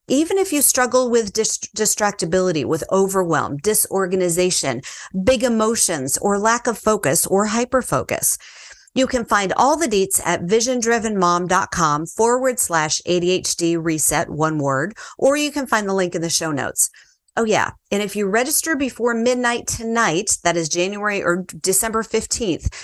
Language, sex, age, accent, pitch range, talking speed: English, female, 40-59, American, 165-230 Hz, 145 wpm